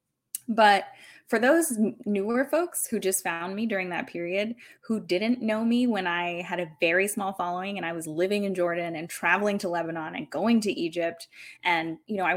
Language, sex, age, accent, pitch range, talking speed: English, female, 20-39, American, 170-220 Hz, 200 wpm